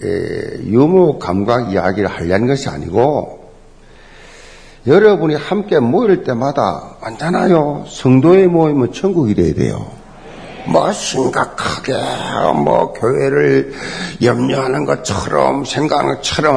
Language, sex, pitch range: Korean, male, 125-190 Hz